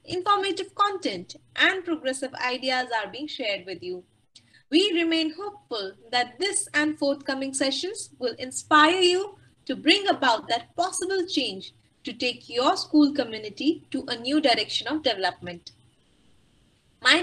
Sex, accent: female, Indian